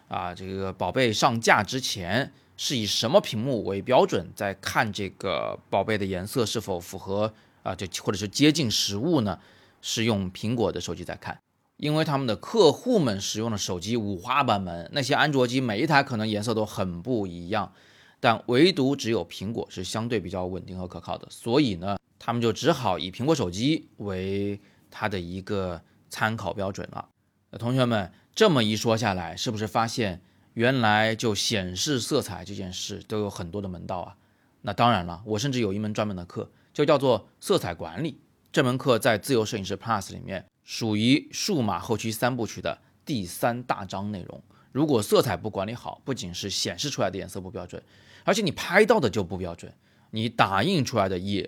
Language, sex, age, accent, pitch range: Chinese, male, 20-39, native, 95-120 Hz